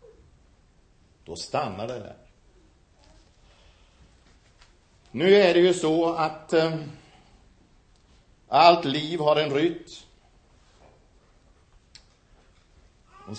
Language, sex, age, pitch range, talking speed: Swedish, male, 60-79, 115-175 Hz, 75 wpm